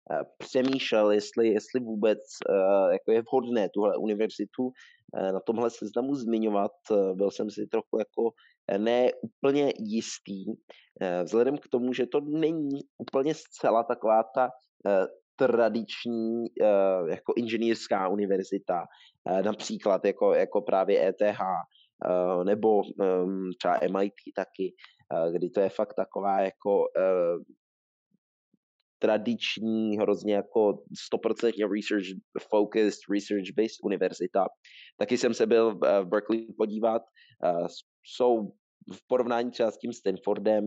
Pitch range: 100-120 Hz